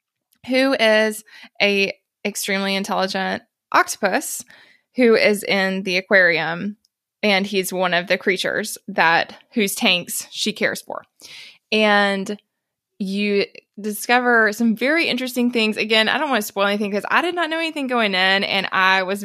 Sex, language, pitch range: female, English, 190-235 Hz